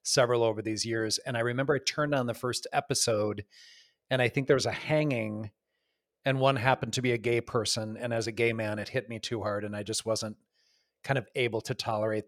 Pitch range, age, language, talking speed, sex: 110-130 Hz, 30-49, English, 230 wpm, male